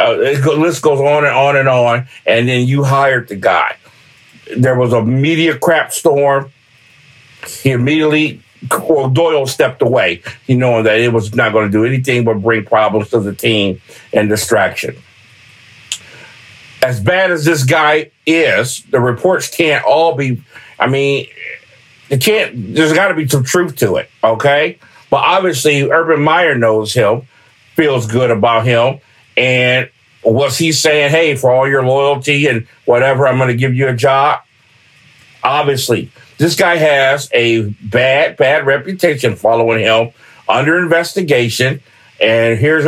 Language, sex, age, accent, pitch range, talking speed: English, male, 50-69, American, 120-155 Hz, 155 wpm